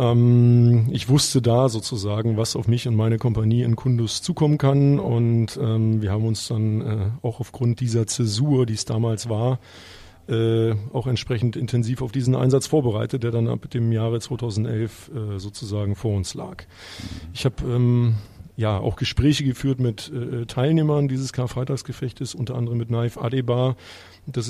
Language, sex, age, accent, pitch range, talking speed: German, male, 40-59, German, 110-130 Hz, 160 wpm